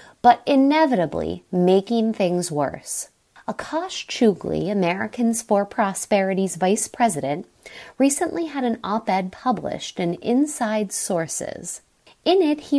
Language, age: English, 30-49